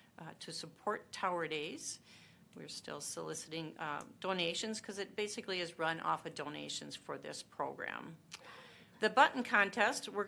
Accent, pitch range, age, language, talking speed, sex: American, 160-195 Hz, 40-59, English, 145 wpm, female